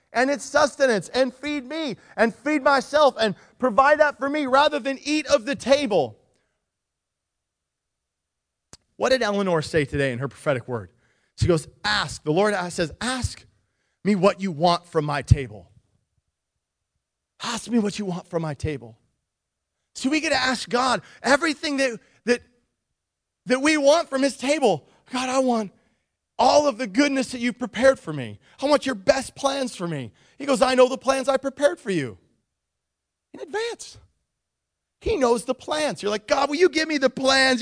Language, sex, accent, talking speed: English, male, American, 175 wpm